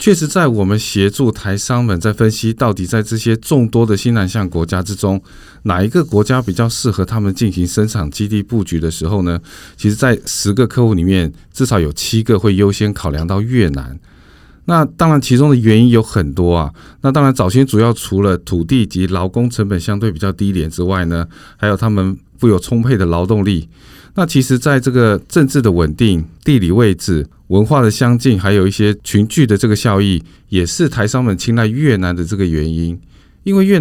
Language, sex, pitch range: Chinese, male, 95-120 Hz